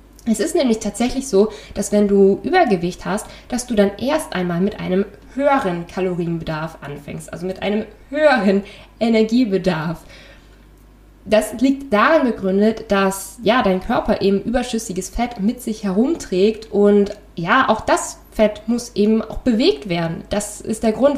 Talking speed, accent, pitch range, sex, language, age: 150 wpm, German, 190-230 Hz, female, German, 20-39